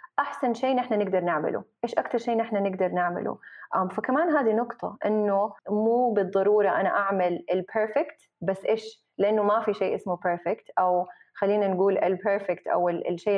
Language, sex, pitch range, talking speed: Arabic, female, 175-220 Hz, 155 wpm